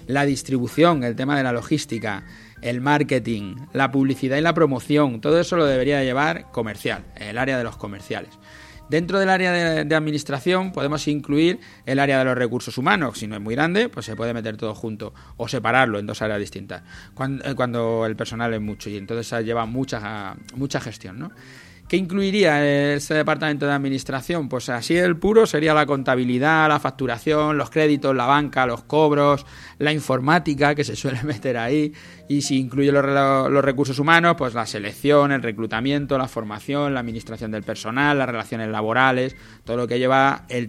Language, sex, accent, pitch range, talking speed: Spanish, male, Spanish, 115-150 Hz, 180 wpm